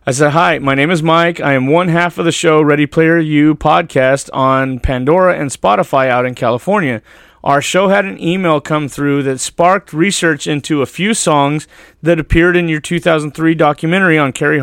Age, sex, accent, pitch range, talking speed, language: 30-49, male, American, 140-170 Hz, 195 wpm, English